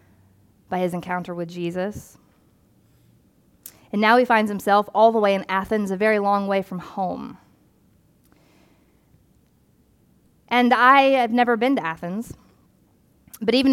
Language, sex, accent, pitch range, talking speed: English, female, American, 195-250 Hz, 130 wpm